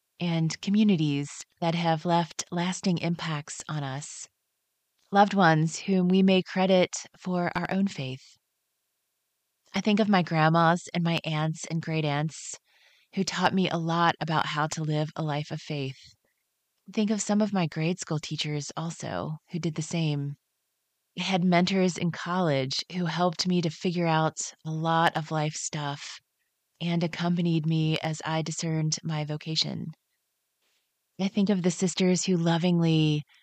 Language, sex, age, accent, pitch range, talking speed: English, female, 30-49, American, 155-180 Hz, 155 wpm